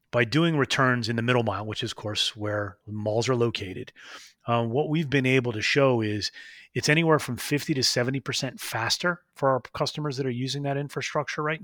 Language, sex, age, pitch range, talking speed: English, male, 30-49, 115-140 Hz, 200 wpm